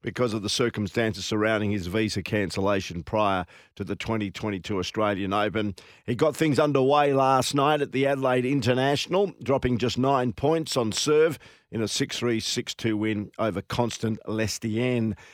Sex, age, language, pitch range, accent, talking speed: male, 50-69, English, 110-140 Hz, Australian, 150 wpm